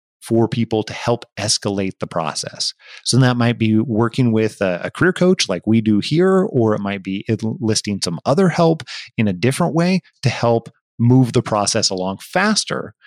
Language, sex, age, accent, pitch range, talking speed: English, male, 30-49, American, 100-130 Hz, 180 wpm